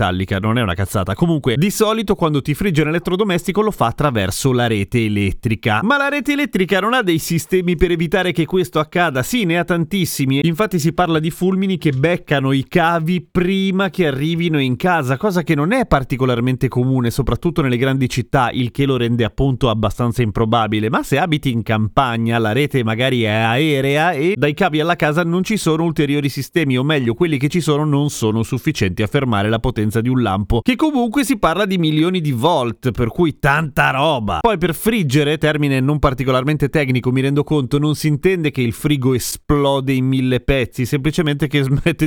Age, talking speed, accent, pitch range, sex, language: 30-49, 195 wpm, native, 120-175 Hz, male, Italian